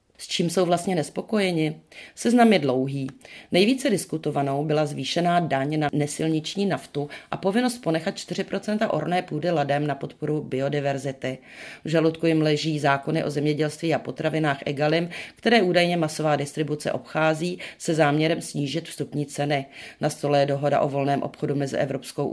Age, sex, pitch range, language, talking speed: 40-59, female, 140-170 Hz, Czech, 150 wpm